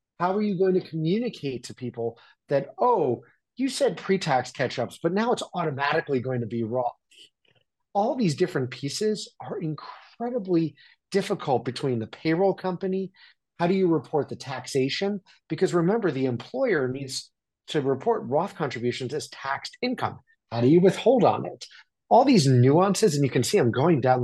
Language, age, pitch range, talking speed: English, 30-49, 130-190 Hz, 165 wpm